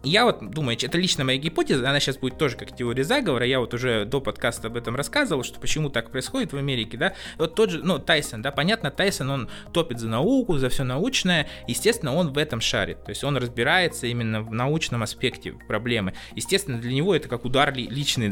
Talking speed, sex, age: 215 wpm, male, 20-39